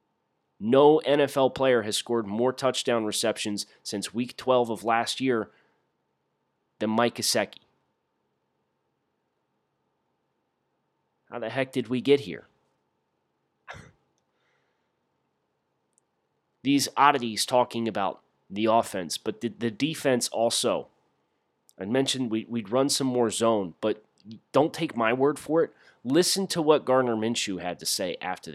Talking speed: 120 wpm